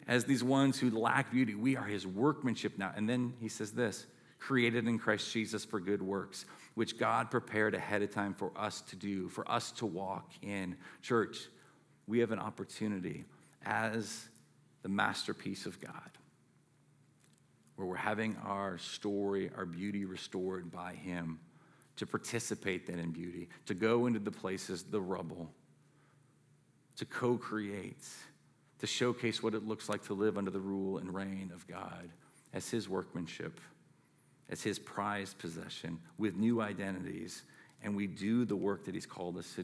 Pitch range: 95-110 Hz